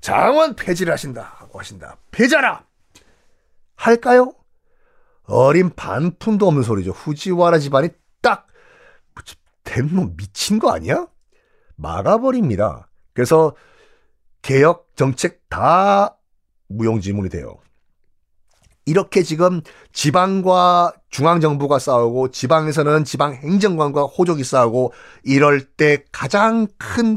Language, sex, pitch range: Korean, male, 125-200 Hz